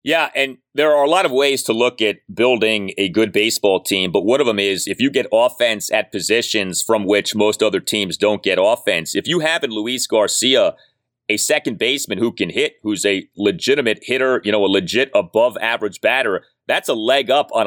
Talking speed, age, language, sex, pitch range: 215 wpm, 30-49, English, male, 110-155 Hz